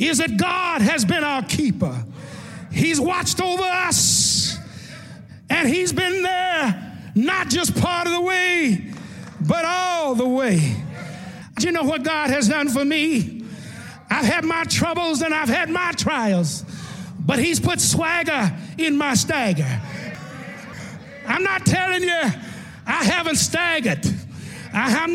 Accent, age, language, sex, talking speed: American, 50-69, English, male, 140 wpm